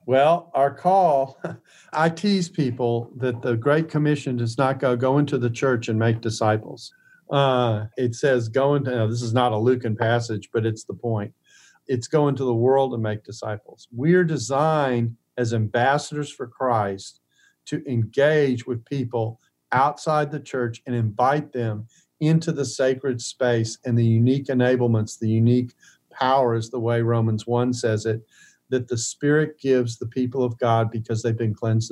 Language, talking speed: English, 165 wpm